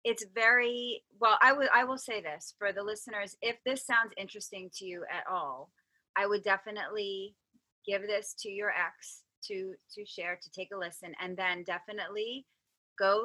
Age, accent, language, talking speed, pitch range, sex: 30-49, American, English, 175 wpm, 185-235 Hz, female